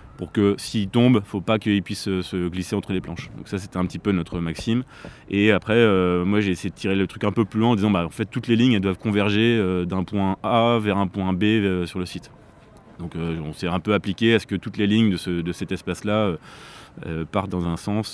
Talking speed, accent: 275 wpm, French